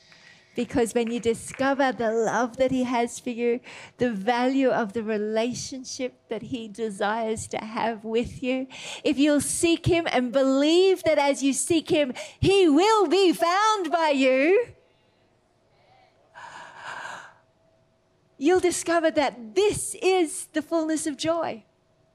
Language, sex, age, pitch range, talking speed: English, female, 40-59, 260-370 Hz, 135 wpm